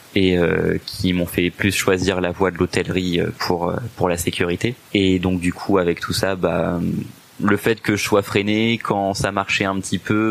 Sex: male